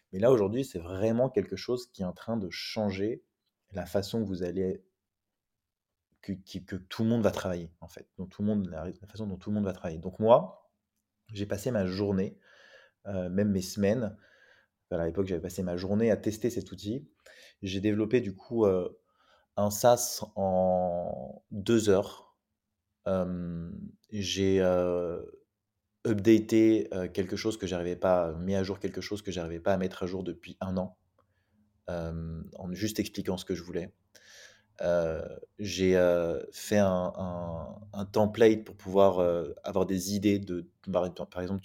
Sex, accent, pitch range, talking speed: male, French, 90-105 Hz, 160 wpm